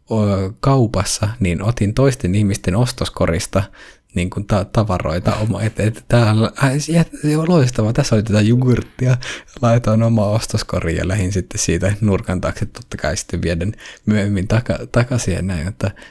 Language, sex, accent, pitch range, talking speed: Finnish, male, native, 95-110 Hz, 125 wpm